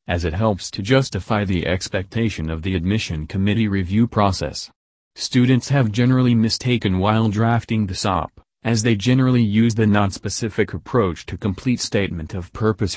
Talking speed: 155 wpm